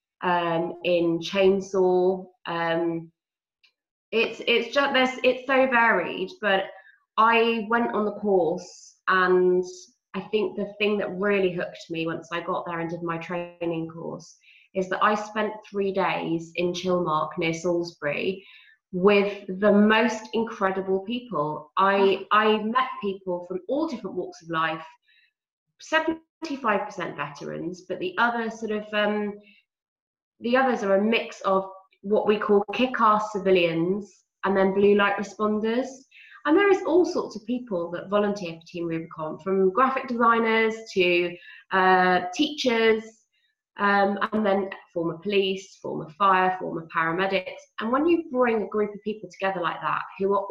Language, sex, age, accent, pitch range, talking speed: English, female, 20-39, British, 180-230 Hz, 150 wpm